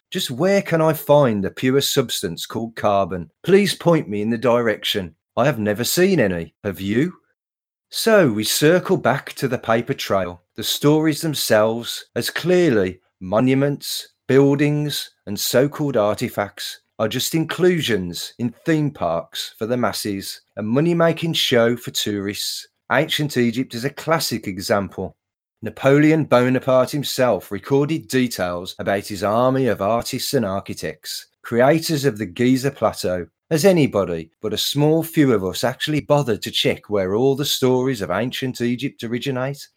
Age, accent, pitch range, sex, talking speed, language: 40-59, British, 105-150 Hz, male, 150 wpm, English